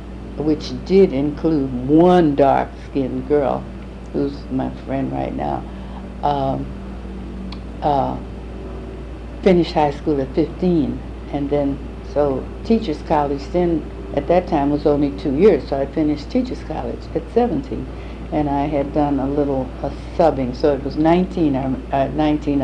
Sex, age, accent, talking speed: female, 60-79, American, 135 wpm